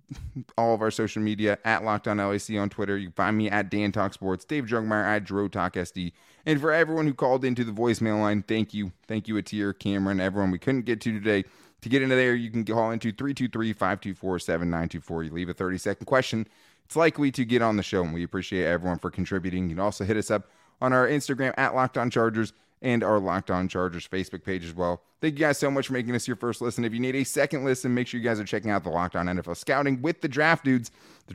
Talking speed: 235 wpm